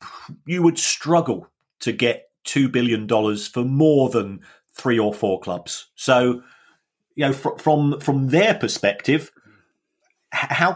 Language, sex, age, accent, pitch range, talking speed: English, male, 40-59, British, 110-145 Hz, 130 wpm